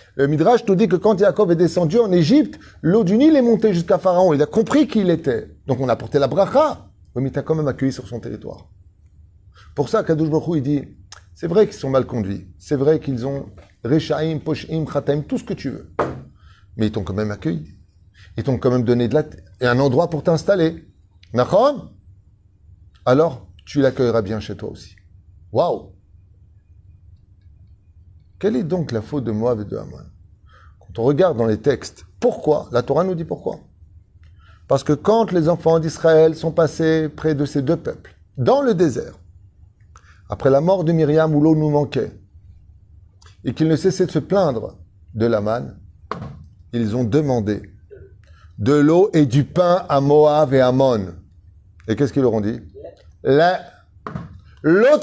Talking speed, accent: 180 wpm, French